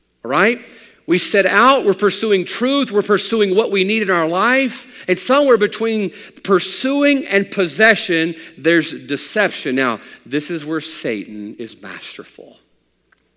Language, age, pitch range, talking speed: English, 50-69, 160-210 Hz, 140 wpm